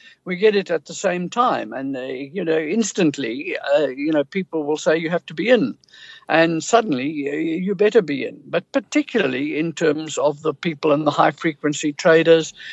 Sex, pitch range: male, 155-205 Hz